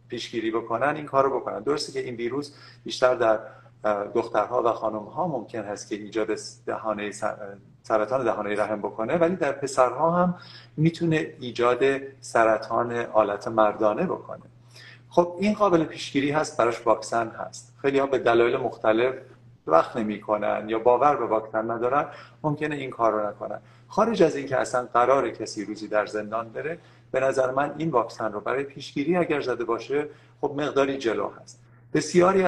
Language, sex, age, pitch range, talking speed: English, male, 40-59, 115-150 Hz, 160 wpm